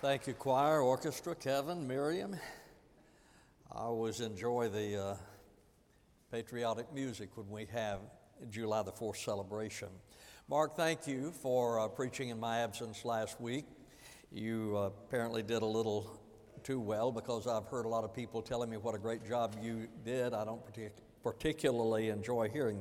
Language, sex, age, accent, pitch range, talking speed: English, male, 60-79, American, 115-150 Hz, 155 wpm